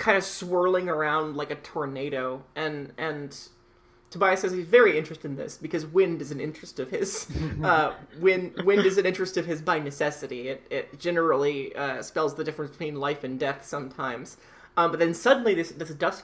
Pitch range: 150-185 Hz